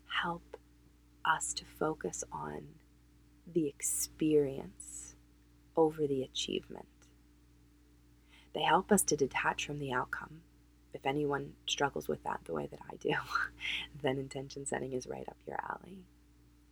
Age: 20-39